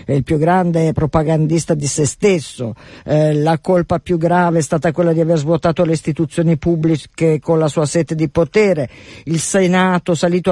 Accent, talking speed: native, 170 wpm